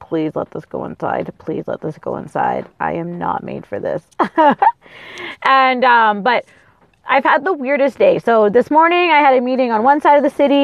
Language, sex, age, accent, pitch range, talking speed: English, female, 20-39, American, 200-265 Hz, 210 wpm